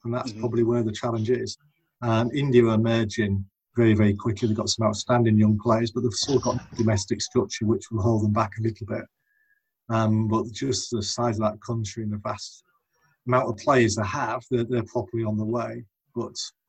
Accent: British